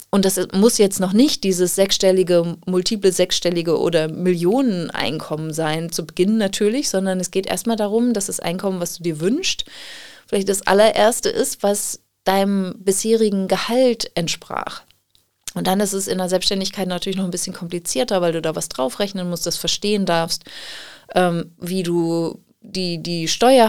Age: 30-49